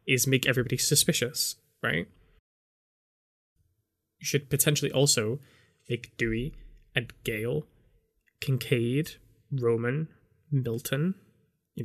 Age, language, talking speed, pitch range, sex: 10-29, English, 85 wpm, 115-140 Hz, male